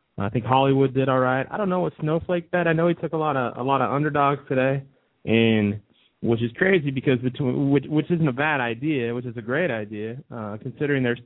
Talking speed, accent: 235 wpm, American